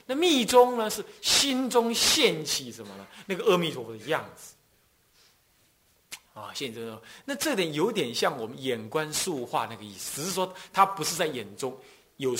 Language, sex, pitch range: Chinese, male, 145-235 Hz